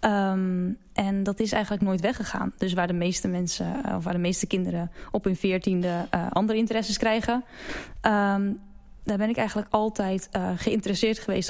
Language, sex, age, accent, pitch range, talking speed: Dutch, female, 10-29, Dutch, 180-215 Hz, 160 wpm